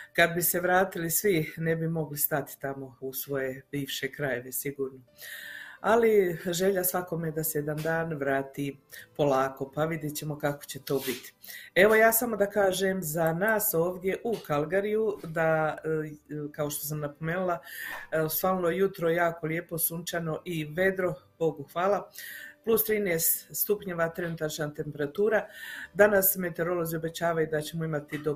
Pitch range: 150-185 Hz